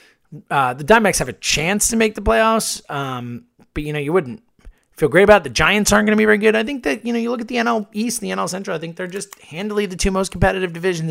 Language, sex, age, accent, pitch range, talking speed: English, male, 30-49, American, 125-200 Hz, 270 wpm